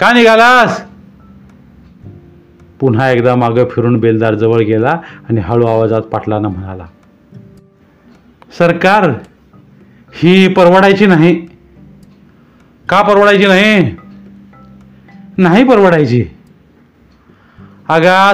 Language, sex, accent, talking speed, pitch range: Marathi, male, native, 80 wpm, 115-190 Hz